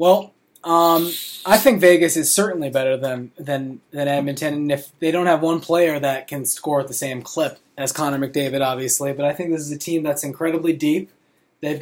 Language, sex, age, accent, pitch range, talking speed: English, male, 20-39, American, 130-165 Hz, 210 wpm